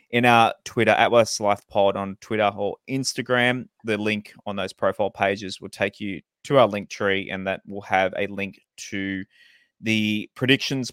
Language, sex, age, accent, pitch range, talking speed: English, male, 20-39, Australian, 100-115 Hz, 180 wpm